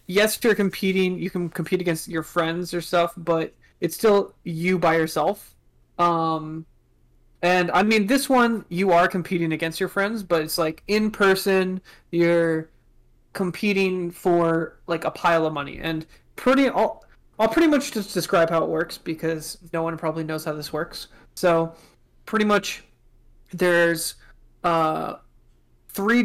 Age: 20-39